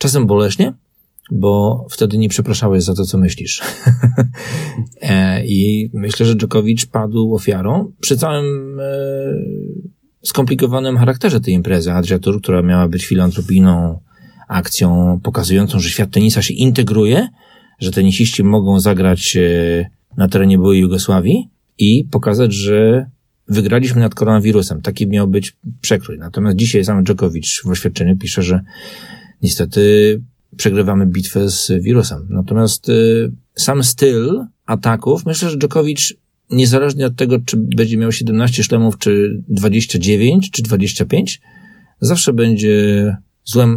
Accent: native